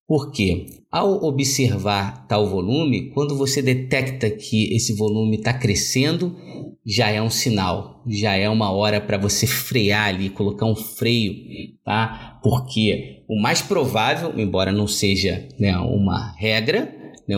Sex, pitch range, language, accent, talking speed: male, 105-135 Hz, Portuguese, Brazilian, 140 wpm